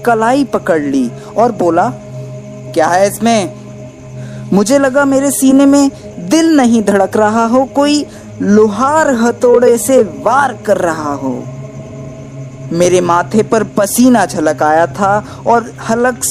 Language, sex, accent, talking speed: Hindi, female, native, 130 wpm